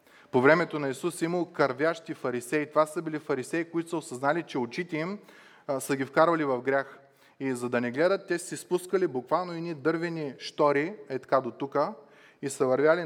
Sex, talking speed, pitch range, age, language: male, 195 wpm, 130-155 Hz, 20-39, Bulgarian